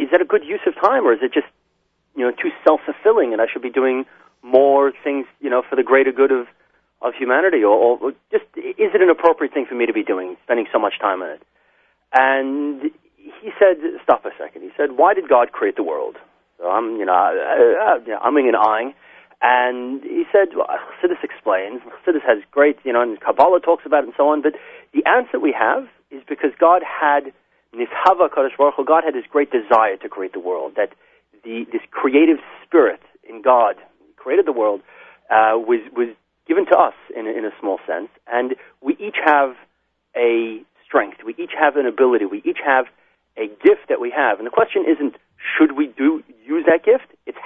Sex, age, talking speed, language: male, 30-49, 210 wpm, English